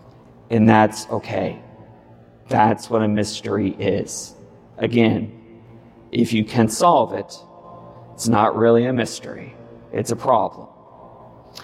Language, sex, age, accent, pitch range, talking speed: English, male, 40-59, American, 115-155 Hz, 115 wpm